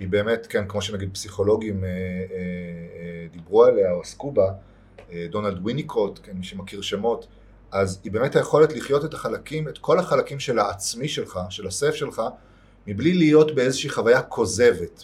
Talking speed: 165 wpm